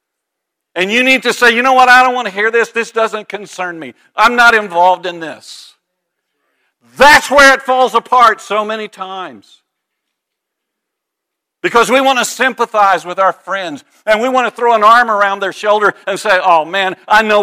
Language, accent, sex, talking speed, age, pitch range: English, American, male, 190 wpm, 50-69, 195-260 Hz